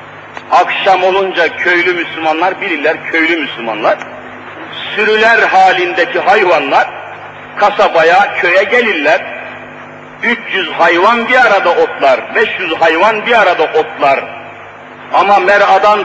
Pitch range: 205-275 Hz